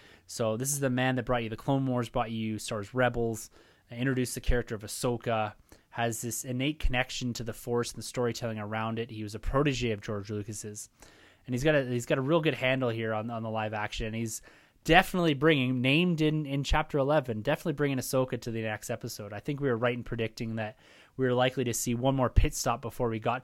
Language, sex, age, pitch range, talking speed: English, male, 20-39, 110-140 Hz, 230 wpm